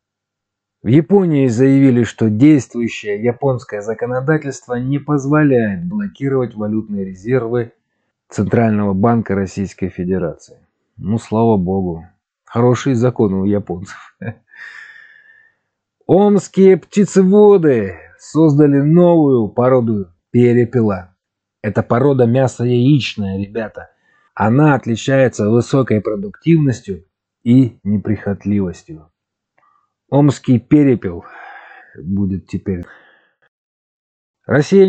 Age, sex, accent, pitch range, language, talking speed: 30-49, male, native, 100-150 Hz, Russian, 75 wpm